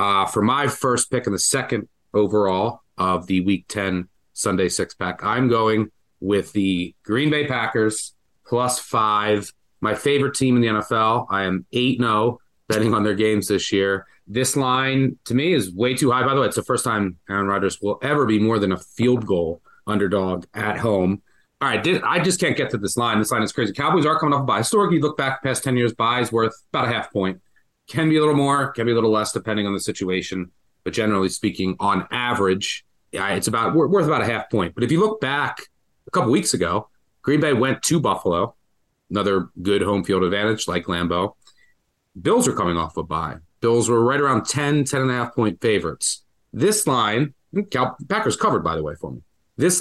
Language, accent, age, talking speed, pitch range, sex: English, American, 30-49, 210 wpm, 100-125 Hz, male